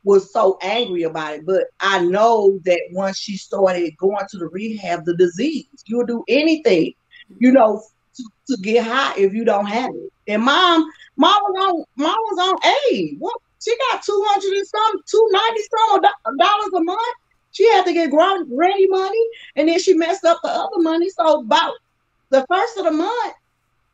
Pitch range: 220-345 Hz